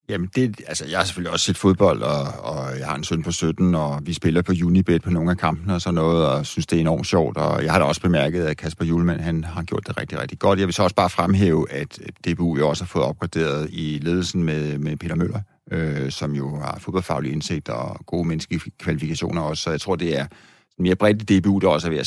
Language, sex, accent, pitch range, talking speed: Danish, male, native, 80-95 Hz, 250 wpm